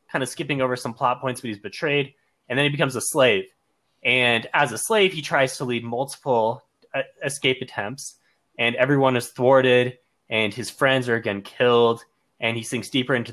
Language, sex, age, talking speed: English, male, 20-39, 190 wpm